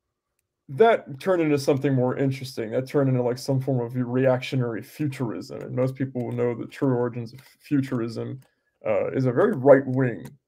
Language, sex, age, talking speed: English, male, 20-39, 180 wpm